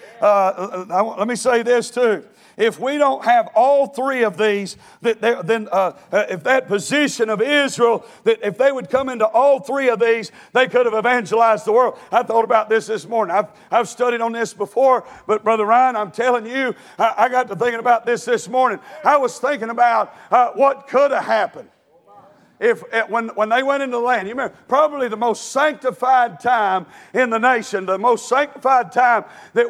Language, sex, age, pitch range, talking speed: English, male, 50-69, 225-270 Hz, 185 wpm